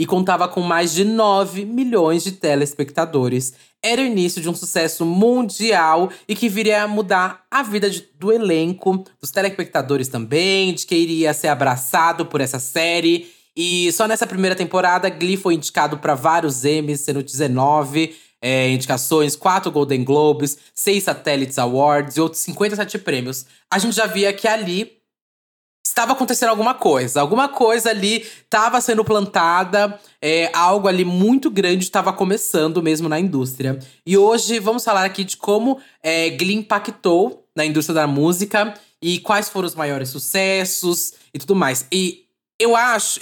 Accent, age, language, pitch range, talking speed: Brazilian, 20-39, Portuguese, 155-205 Hz, 155 wpm